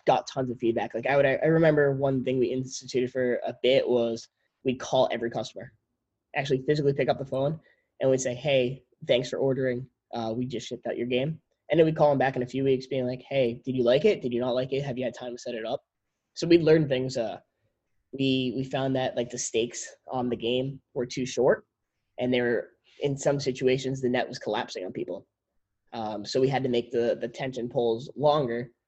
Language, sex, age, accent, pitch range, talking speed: English, male, 10-29, American, 120-140 Hz, 235 wpm